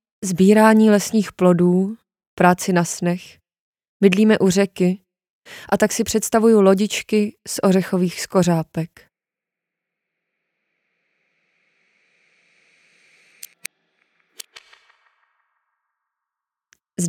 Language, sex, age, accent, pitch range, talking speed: Czech, female, 20-39, native, 175-200 Hz, 65 wpm